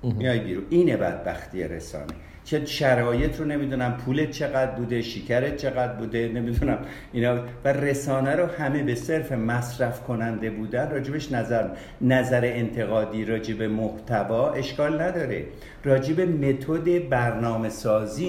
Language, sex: Persian, male